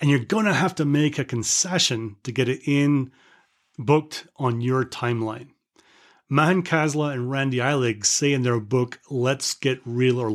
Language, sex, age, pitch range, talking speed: English, male, 30-49, 120-155 Hz, 175 wpm